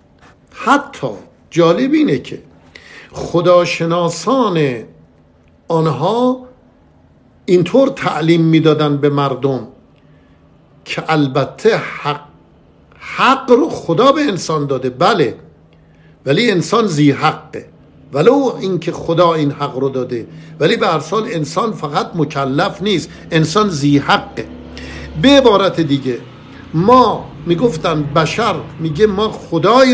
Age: 50-69